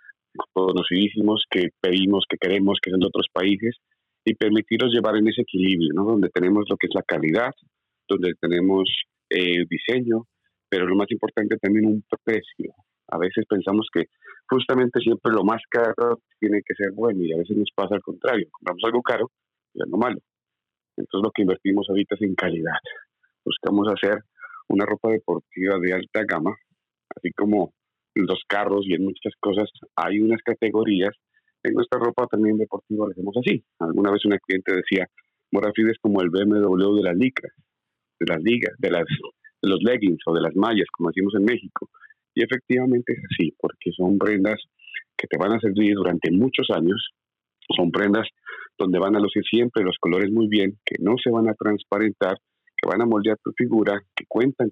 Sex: male